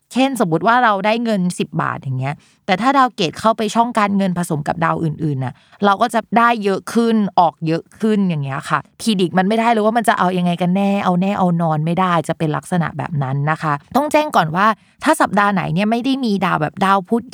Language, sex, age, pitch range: Thai, female, 20-39, 165-220 Hz